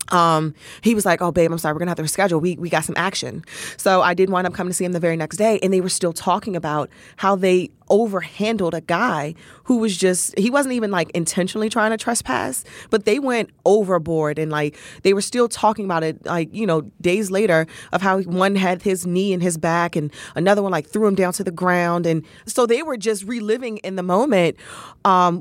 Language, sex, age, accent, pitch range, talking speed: English, female, 20-39, American, 160-205 Hz, 235 wpm